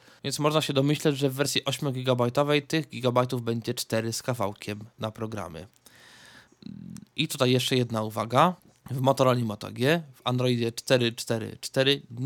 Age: 20-39